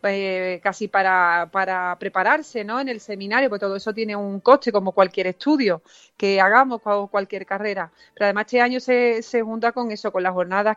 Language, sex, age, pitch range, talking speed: Spanish, female, 30-49, 195-235 Hz, 195 wpm